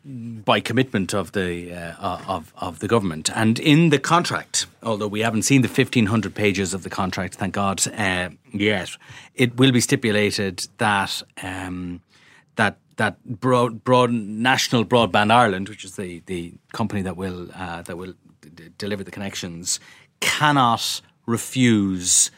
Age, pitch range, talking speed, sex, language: 30-49, 95-125 Hz, 160 wpm, male, English